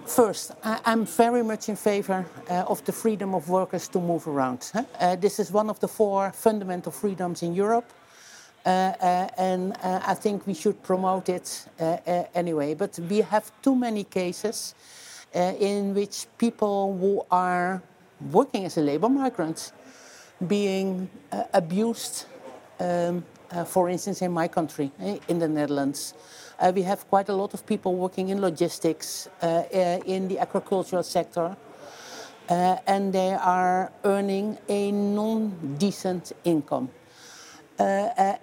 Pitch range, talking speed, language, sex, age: 180-210 Hz, 150 wpm, English, male, 60-79